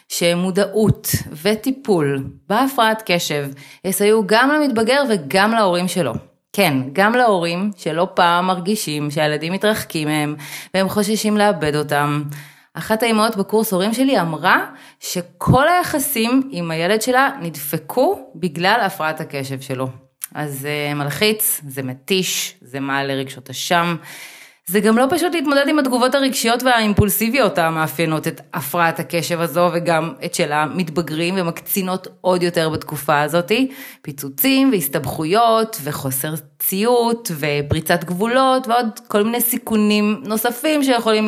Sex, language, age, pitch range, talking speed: female, Hebrew, 30-49, 155-220 Hz, 120 wpm